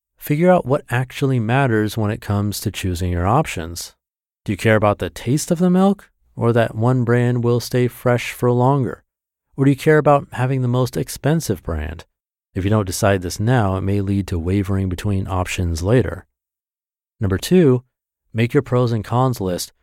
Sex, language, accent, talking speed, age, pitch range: male, English, American, 190 wpm, 40-59, 95-130 Hz